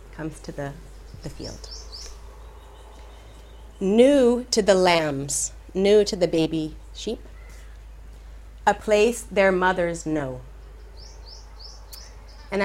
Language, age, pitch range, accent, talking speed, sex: English, 30-49, 120-180 Hz, American, 95 wpm, female